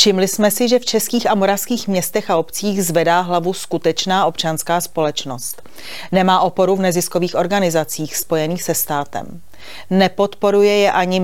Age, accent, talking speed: 40-59, native, 145 wpm